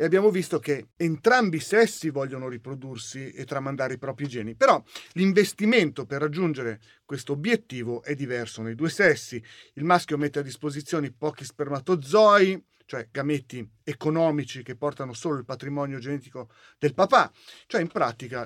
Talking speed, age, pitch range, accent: 150 wpm, 40-59, 135-180 Hz, native